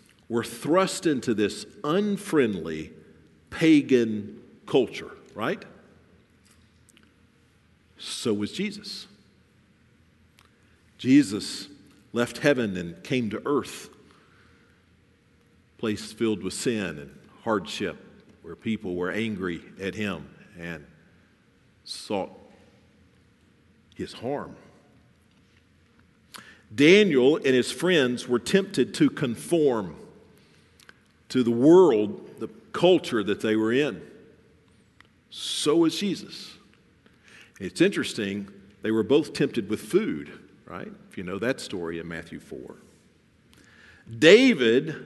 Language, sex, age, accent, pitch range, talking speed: English, male, 50-69, American, 100-160 Hz, 95 wpm